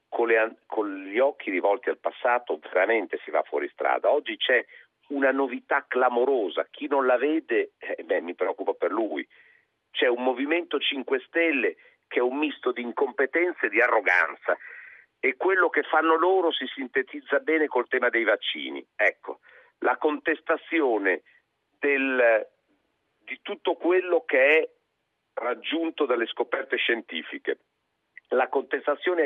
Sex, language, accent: male, Italian, native